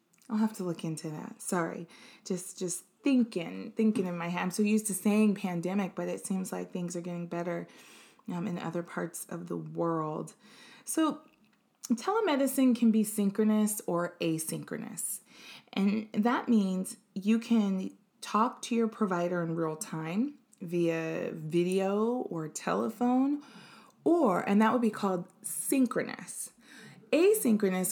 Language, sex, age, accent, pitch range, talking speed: English, female, 20-39, American, 175-225 Hz, 140 wpm